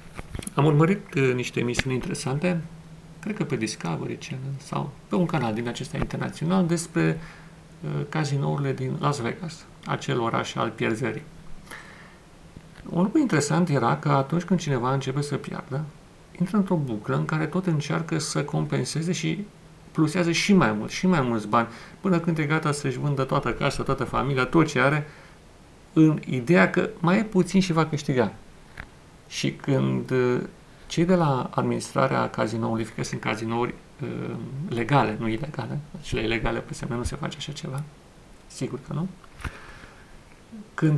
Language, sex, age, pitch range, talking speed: Romanian, male, 40-59, 120-170 Hz, 155 wpm